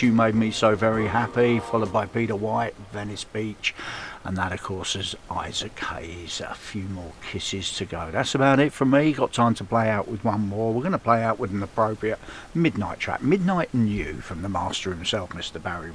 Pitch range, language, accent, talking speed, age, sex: 105-135 Hz, English, British, 215 wpm, 50-69, male